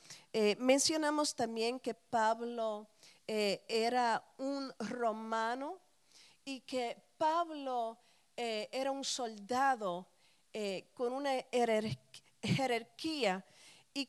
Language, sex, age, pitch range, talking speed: Spanish, female, 40-59, 220-270 Hz, 90 wpm